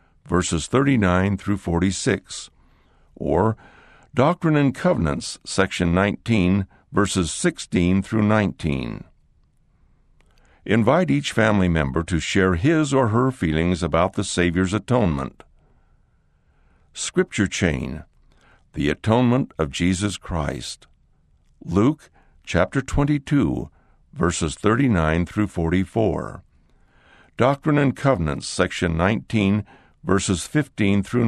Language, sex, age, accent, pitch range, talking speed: English, male, 60-79, American, 80-115 Hz, 95 wpm